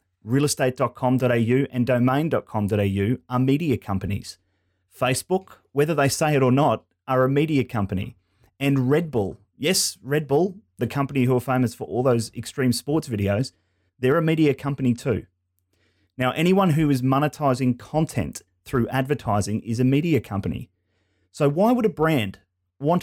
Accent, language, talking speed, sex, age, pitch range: Australian, English, 150 wpm, male, 30-49, 105-140 Hz